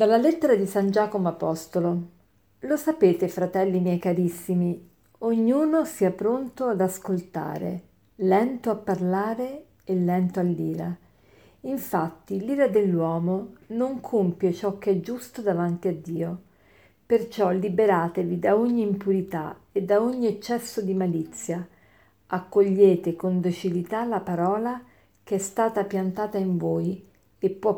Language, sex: Italian, female